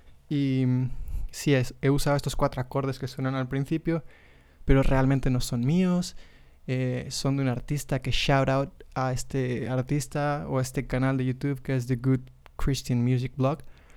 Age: 20-39